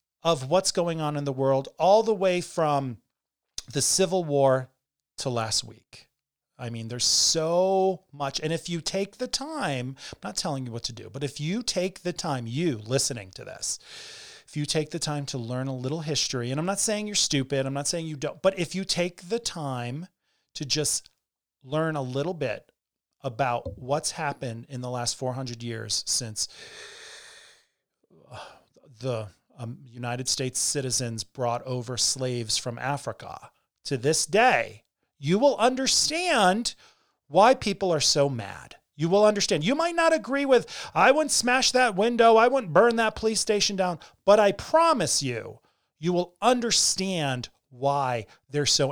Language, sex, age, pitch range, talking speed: English, male, 30-49, 130-200 Hz, 170 wpm